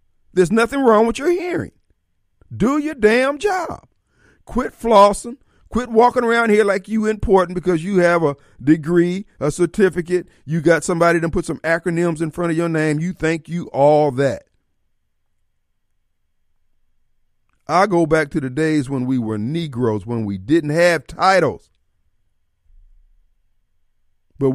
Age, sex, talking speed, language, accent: 50-69, male, 145 wpm, English, American